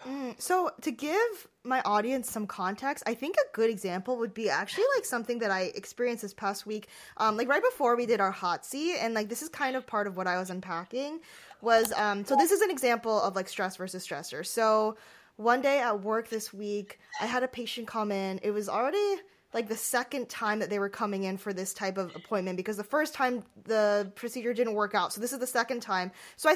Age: 10-29